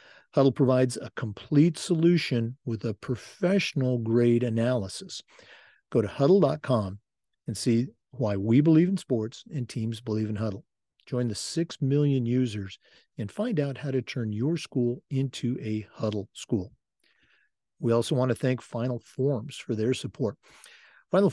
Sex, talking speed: male, 150 wpm